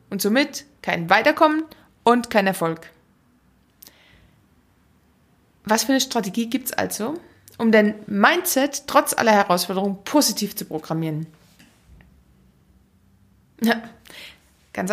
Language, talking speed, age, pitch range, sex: German, 100 wpm, 20-39, 180-265 Hz, female